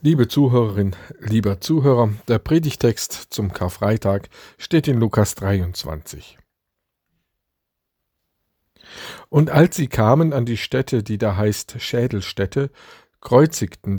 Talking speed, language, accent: 105 wpm, German, German